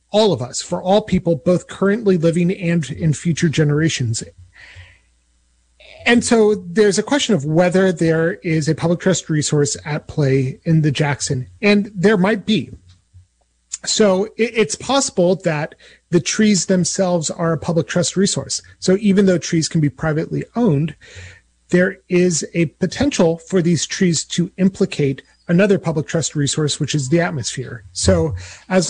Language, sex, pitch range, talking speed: English, male, 150-195 Hz, 155 wpm